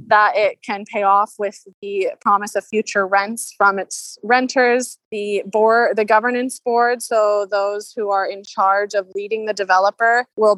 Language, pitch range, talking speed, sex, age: English, 195-220 Hz, 170 wpm, female, 20-39